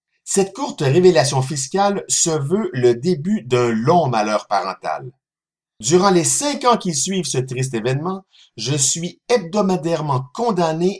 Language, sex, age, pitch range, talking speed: French, male, 50-69, 135-190 Hz, 135 wpm